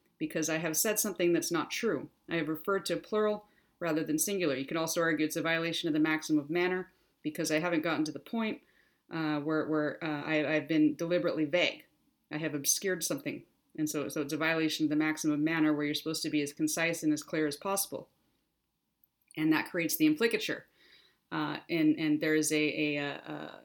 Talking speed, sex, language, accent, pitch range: 215 wpm, female, English, American, 155-175 Hz